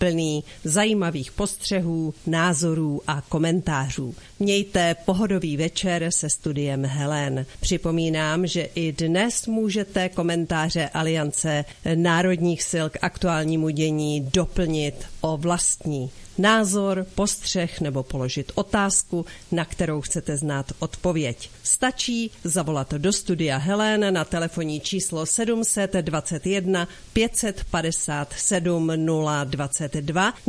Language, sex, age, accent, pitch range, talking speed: Czech, female, 50-69, native, 155-190 Hz, 95 wpm